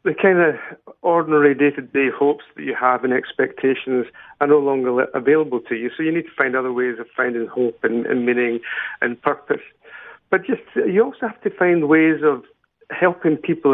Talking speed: 190 wpm